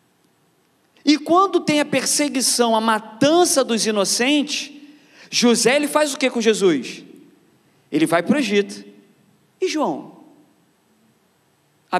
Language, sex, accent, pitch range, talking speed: Portuguese, male, Brazilian, 195-305 Hz, 120 wpm